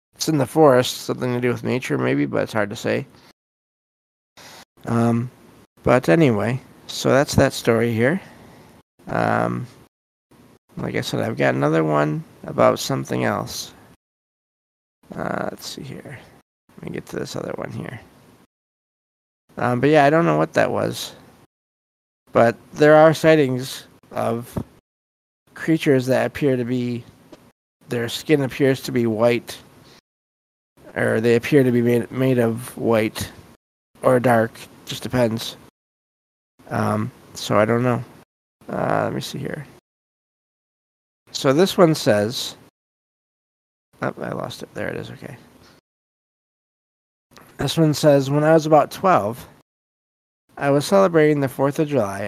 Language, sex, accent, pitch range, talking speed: English, male, American, 110-135 Hz, 140 wpm